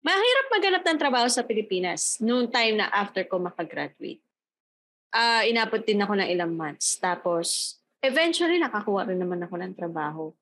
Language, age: Filipino, 20-39